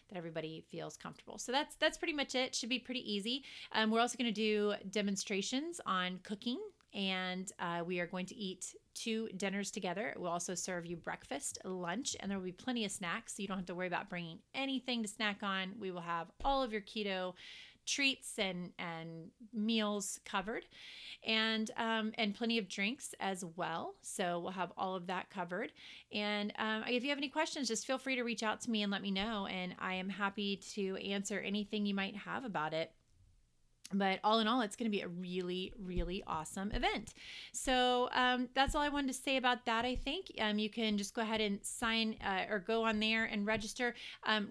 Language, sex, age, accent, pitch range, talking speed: English, female, 30-49, American, 190-235 Hz, 210 wpm